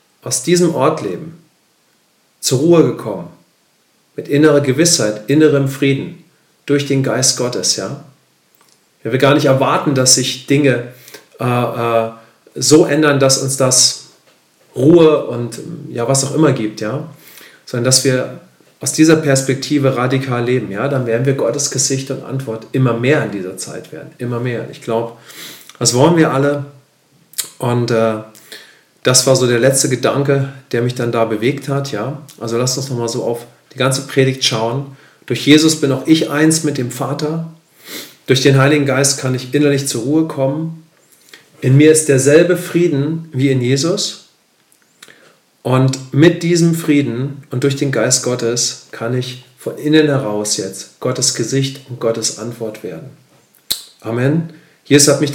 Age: 40-59